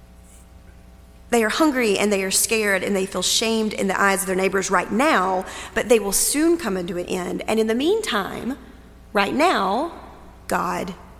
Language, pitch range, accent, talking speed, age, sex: English, 185-245 Hz, American, 180 wpm, 40-59, female